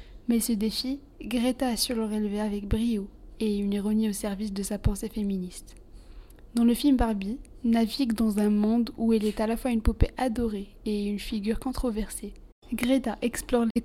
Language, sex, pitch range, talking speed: French, female, 205-235 Hz, 180 wpm